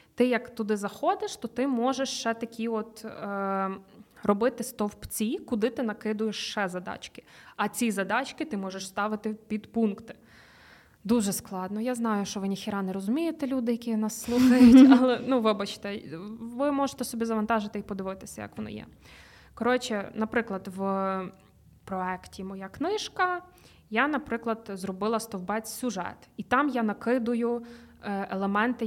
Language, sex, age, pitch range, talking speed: Ukrainian, female, 20-39, 200-245 Hz, 135 wpm